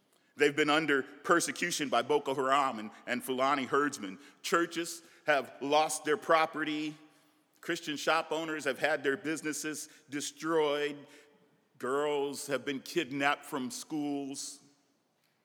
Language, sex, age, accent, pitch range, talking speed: English, male, 50-69, American, 145-195 Hz, 115 wpm